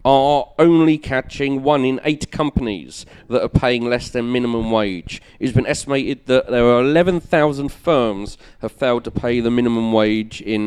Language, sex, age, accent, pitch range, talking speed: English, male, 40-59, British, 105-125 Hz, 170 wpm